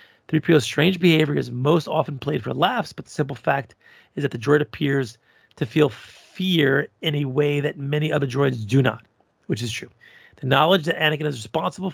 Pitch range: 130-160 Hz